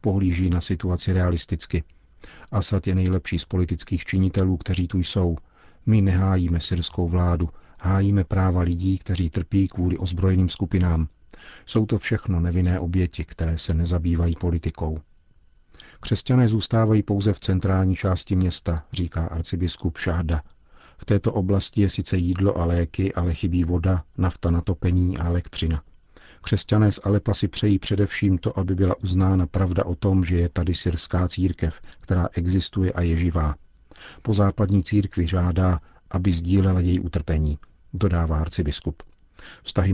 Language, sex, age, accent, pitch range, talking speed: Czech, male, 50-69, native, 85-95 Hz, 140 wpm